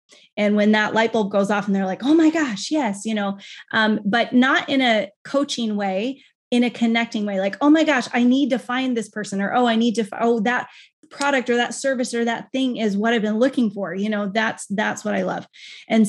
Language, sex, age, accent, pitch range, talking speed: English, female, 20-39, American, 210-255 Hz, 245 wpm